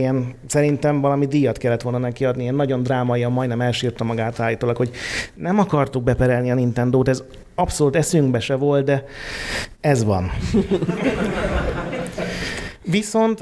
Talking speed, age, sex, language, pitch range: 135 wpm, 30-49, male, Hungarian, 115-140 Hz